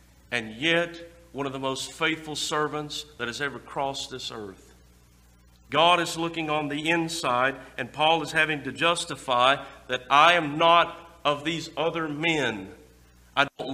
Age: 50-69